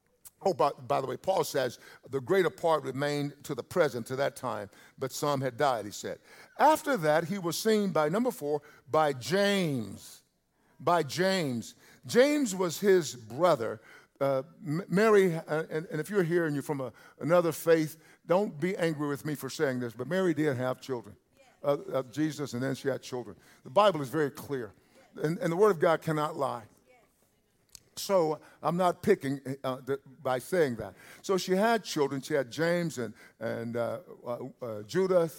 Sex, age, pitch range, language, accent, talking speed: male, 50-69, 130-170 Hz, English, American, 180 wpm